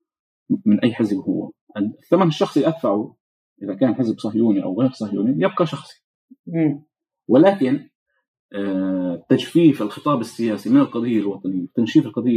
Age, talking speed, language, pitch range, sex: 30-49, 130 wpm, Arabic, 105-170 Hz, male